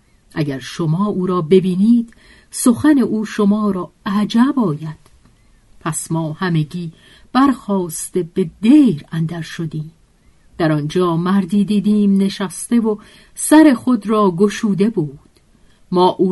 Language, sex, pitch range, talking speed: Persian, female, 165-210 Hz, 120 wpm